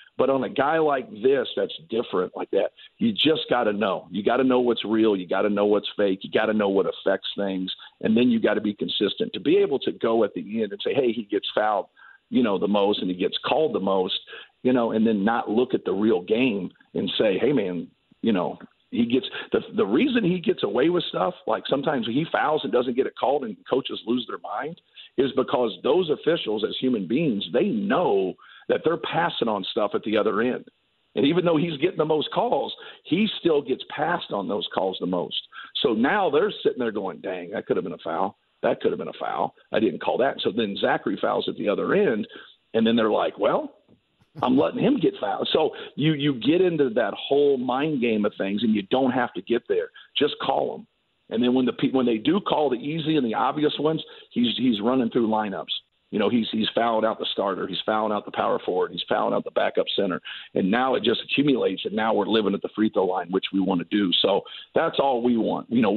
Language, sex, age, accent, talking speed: English, male, 50-69, American, 245 wpm